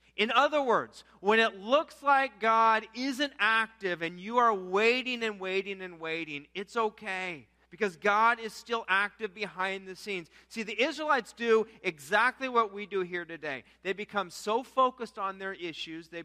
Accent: American